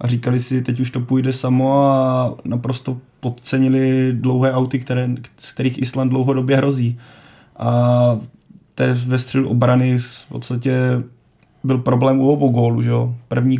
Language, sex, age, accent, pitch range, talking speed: Czech, male, 20-39, native, 120-130 Hz, 130 wpm